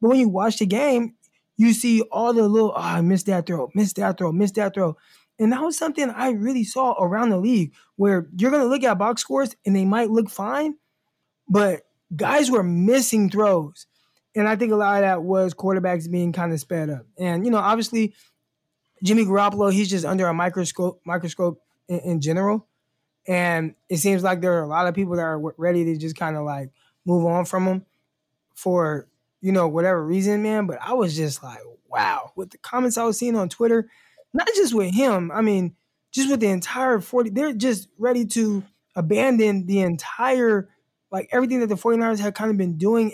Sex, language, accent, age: male, English, American, 20-39